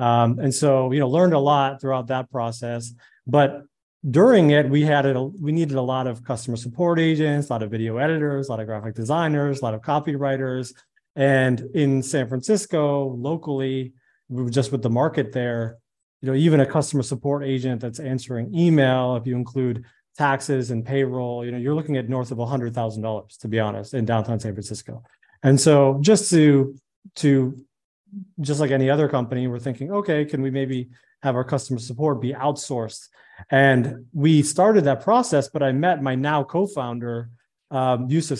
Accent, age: American, 30-49